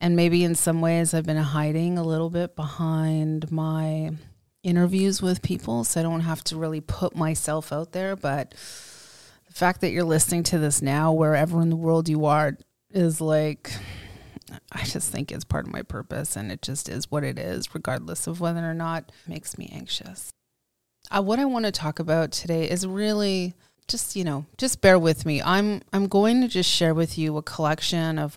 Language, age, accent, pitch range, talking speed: English, 30-49, American, 155-180 Hz, 200 wpm